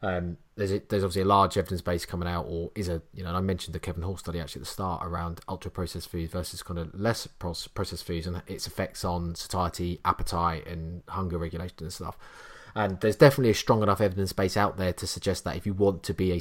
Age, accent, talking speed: 20-39, British, 245 wpm